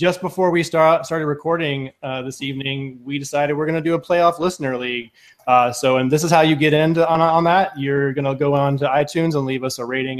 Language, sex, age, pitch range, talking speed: English, male, 20-39, 120-145 Hz, 255 wpm